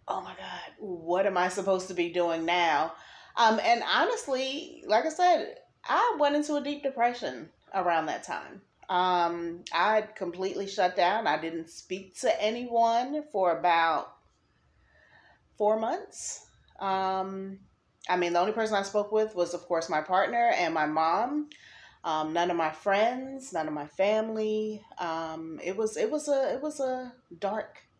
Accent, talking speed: American, 165 wpm